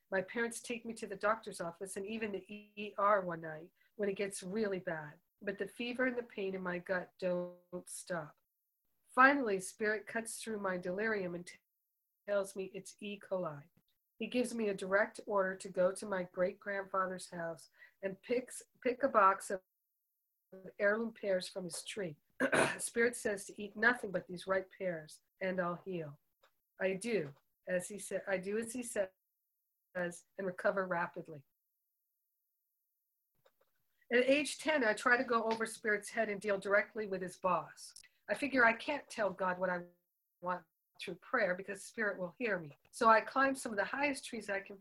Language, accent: English, American